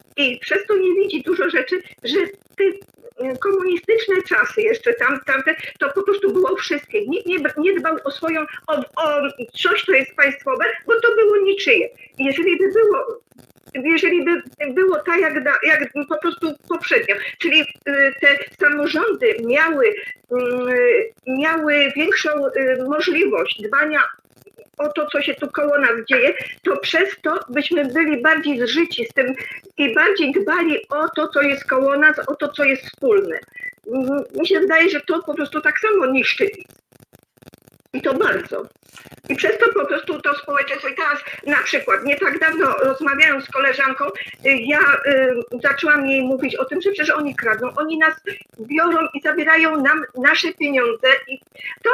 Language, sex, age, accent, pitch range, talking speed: Polish, female, 50-69, native, 280-400 Hz, 160 wpm